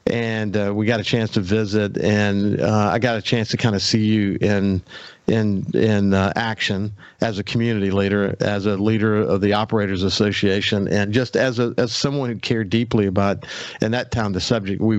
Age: 50-69